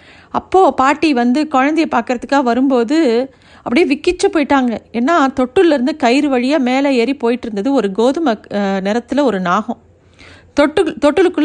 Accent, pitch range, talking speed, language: native, 235-295 Hz, 115 wpm, Tamil